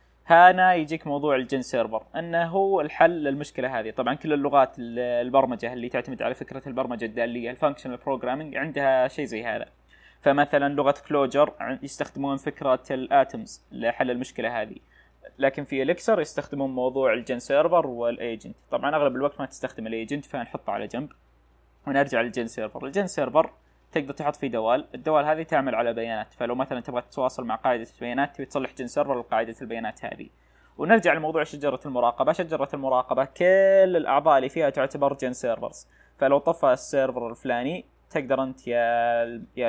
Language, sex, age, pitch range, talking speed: Arabic, male, 20-39, 125-150 Hz, 150 wpm